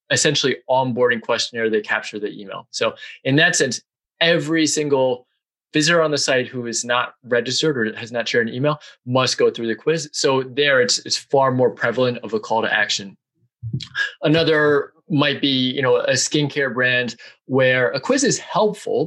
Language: English